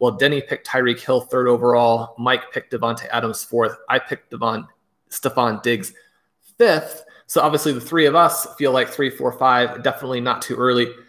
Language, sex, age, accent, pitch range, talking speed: English, male, 20-39, American, 120-145 Hz, 180 wpm